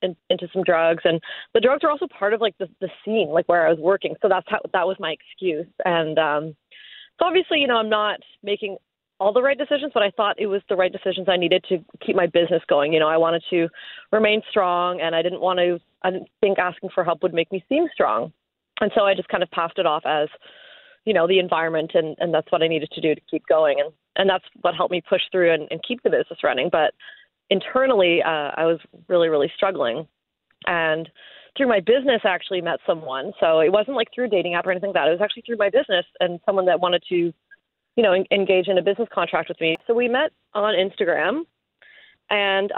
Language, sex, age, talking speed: English, female, 30-49, 240 wpm